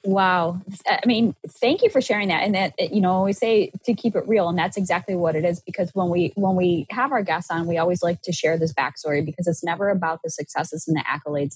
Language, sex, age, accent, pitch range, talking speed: English, female, 20-39, American, 160-185 Hz, 255 wpm